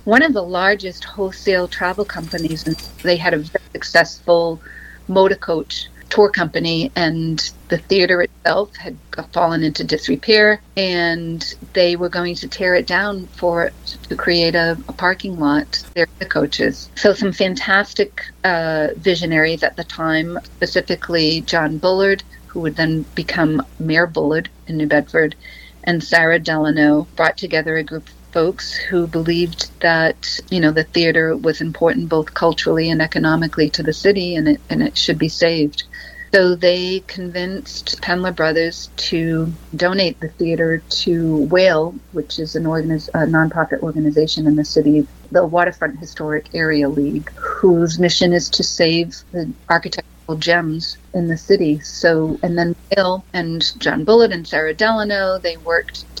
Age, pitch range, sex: 40-59, 160-180 Hz, female